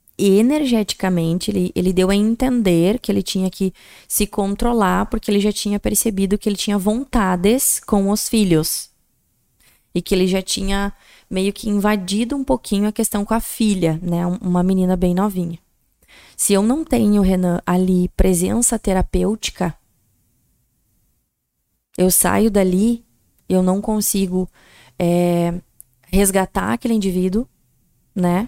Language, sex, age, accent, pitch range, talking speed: Portuguese, female, 20-39, Brazilian, 180-205 Hz, 135 wpm